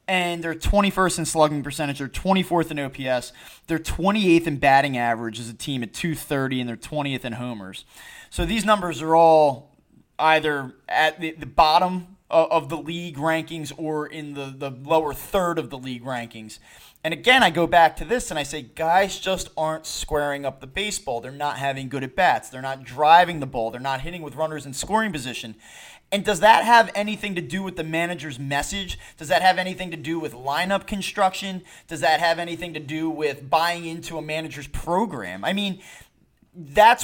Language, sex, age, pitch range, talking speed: English, male, 20-39, 140-195 Hz, 195 wpm